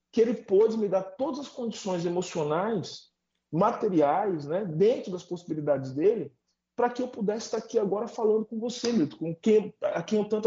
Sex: male